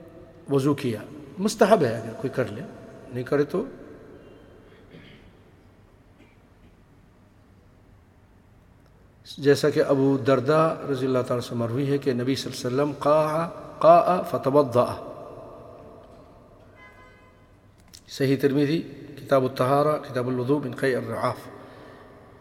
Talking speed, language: 95 wpm, English